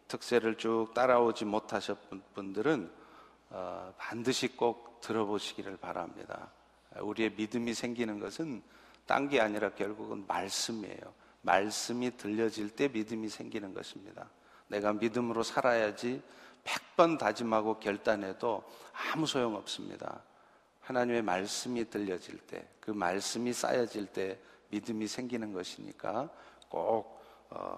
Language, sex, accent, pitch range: Korean, male, native, 110-155 Hz